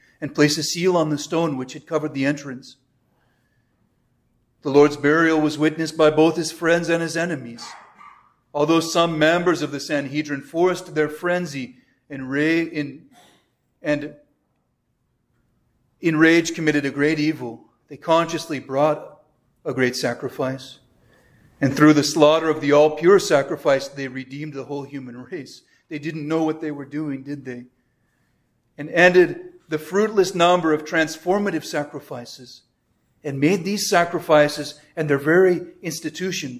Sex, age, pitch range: male, 40-59, 135-165 Hz